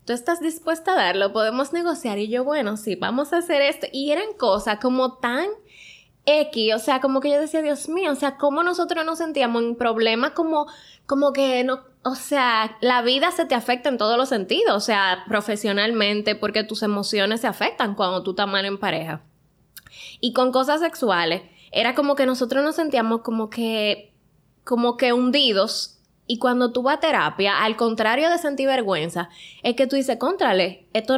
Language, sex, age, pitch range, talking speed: Spanish, female, 10-29, 205-275 Hz, 190 wpm